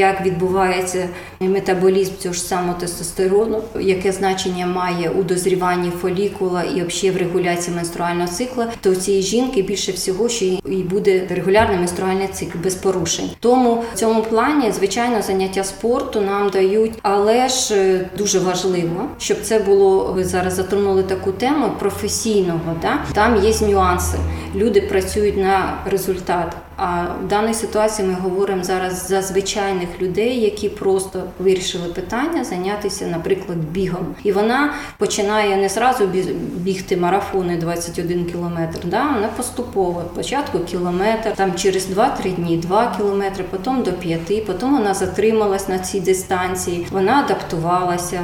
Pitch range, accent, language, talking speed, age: 180-205 Hz, native, Ukrainian, 140 wpm, 20-39